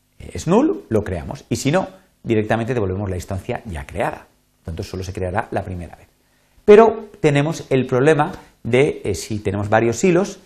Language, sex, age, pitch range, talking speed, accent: Spanish, male, 40-59, 105-145 Hz, 170 wpm, Spanish